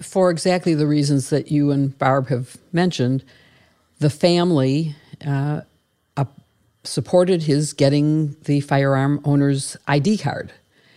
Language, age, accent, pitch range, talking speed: English, 50-69, American, 135-155 Hz, 120 wpm